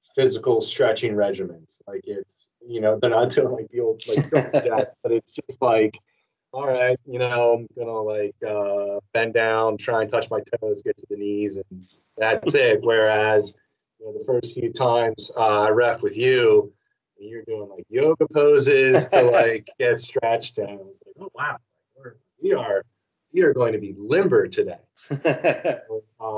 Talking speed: 180 wpm